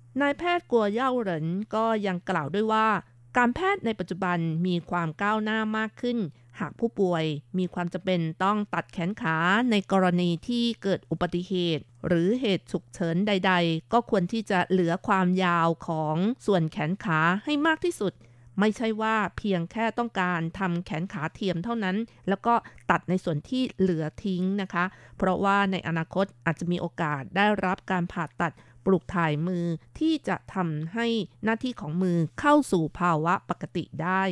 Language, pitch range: Thai, 165-205 Hz